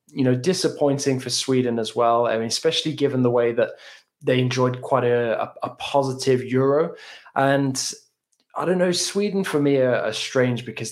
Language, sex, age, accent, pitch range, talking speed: English, male, 20-39, British, 115-140 Hz, 175 wpm